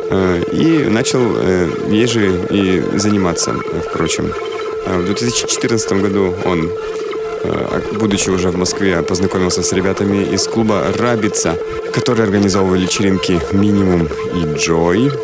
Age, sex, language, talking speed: 20-39, male, Russian, 100 wpm